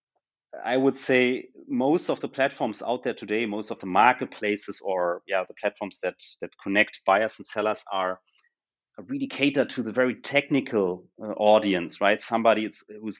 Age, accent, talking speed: 30-49, German, 160 wpm